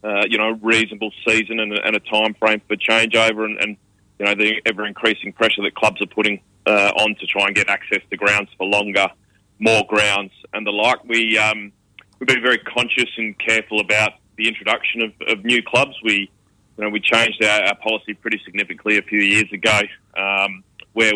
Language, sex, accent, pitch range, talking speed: English, male, Australian, 105-115 Hz, 205 wpm